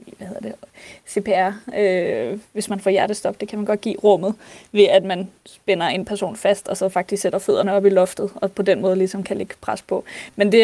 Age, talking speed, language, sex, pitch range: 20-39, 225 wpm, Danish, female, 195-215 Hz